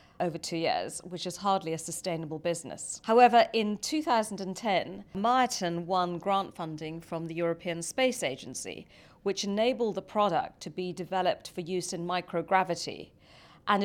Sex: female